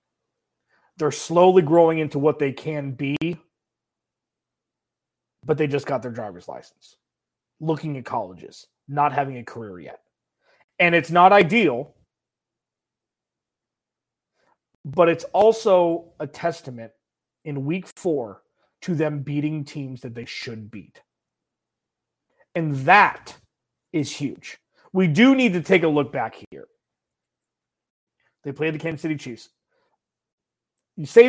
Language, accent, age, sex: English, American, 30-49, male